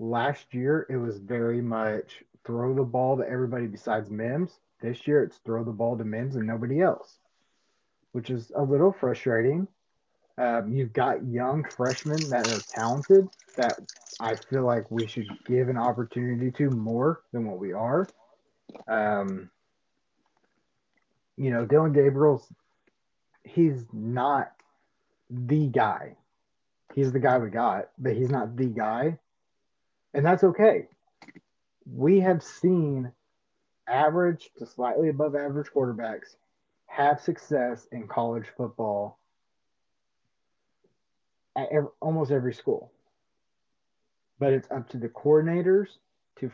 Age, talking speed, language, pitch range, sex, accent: 30-49, 130 wpm, English, 115-145 Hz, male, American